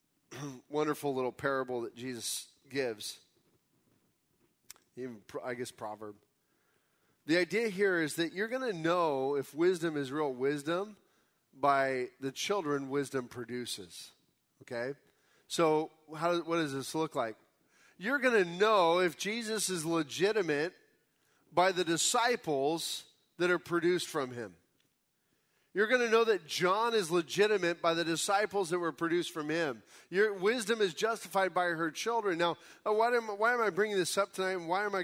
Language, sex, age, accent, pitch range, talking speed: English, male, 40-59, American, 160-215 Hz, 150 wpm